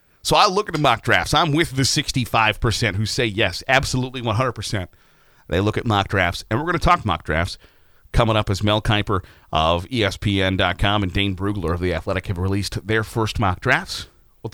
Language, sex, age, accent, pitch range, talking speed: English, male, 40-59, American, 90-125 Hz, 200 wpm